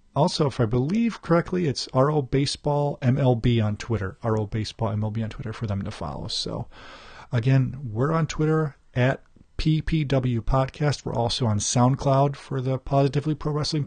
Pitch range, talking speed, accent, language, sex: 115-145 Hz, 150 wpm, American, English, male